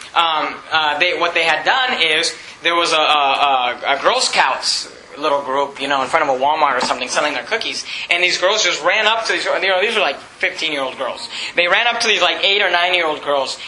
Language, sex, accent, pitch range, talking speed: English, male, American, 175-255 Hz, 235 wpm